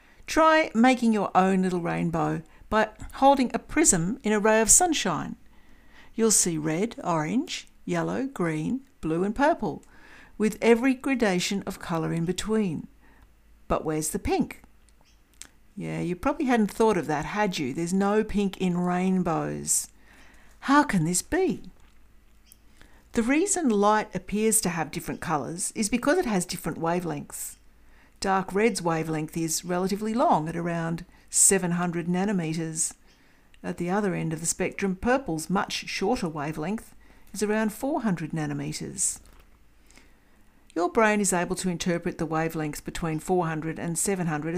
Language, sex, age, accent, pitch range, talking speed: English, female, 60-79, Australian, 170-225 Hz, 140 wpm